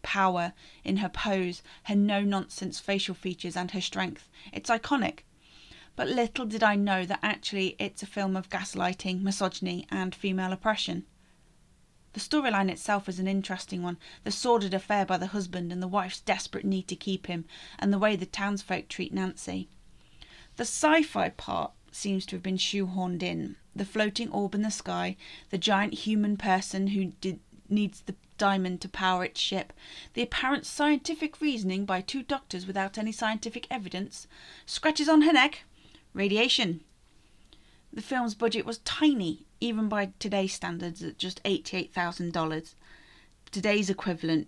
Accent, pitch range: British, 180-215 Hz